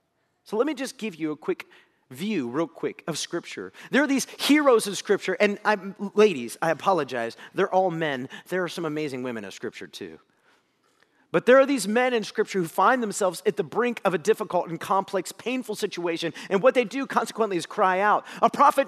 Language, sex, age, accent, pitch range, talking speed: English, male, 40-59, American, 195-285 Hz, 205 wpm